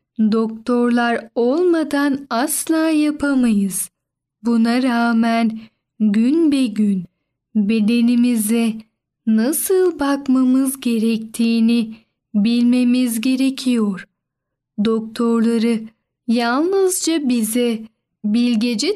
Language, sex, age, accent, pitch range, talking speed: Turkish, female, 10-29, native, 225-280 Hz, 60 wpm